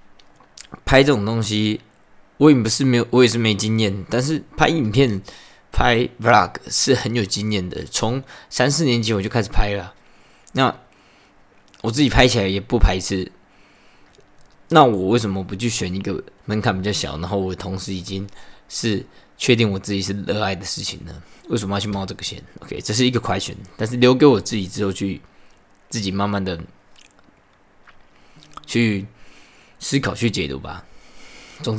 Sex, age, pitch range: male, 20-39, 95-115 Hz